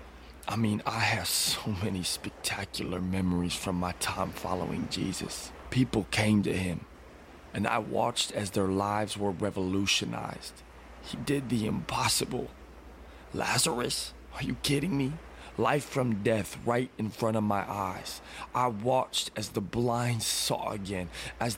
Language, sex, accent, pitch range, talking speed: English, male, American, 95-130 Hz, 140 wpm